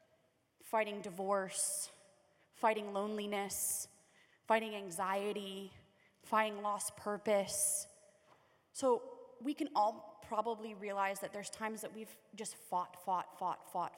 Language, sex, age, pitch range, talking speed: English, female, 20-39, 195-235 Hz, 105 wpm